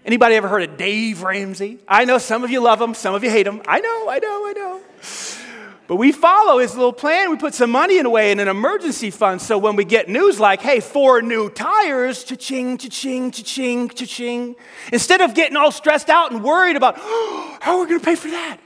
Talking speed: 230 wpm